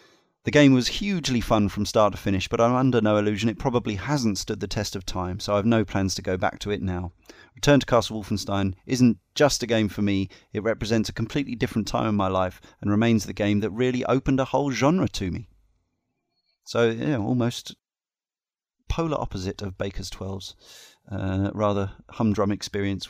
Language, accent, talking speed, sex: English, British, 195 wpm, male